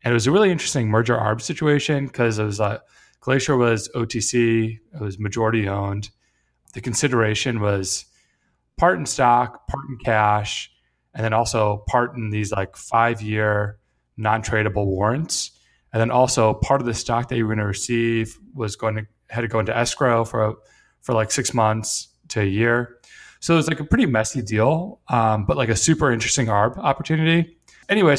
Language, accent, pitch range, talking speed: English, American, 110-135 Hz, 180 wpm